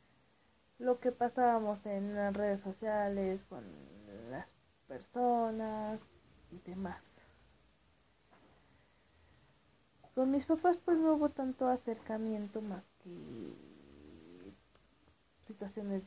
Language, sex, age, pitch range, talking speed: Spanish, female, 30-49, 190-225 Hz, 85 wpm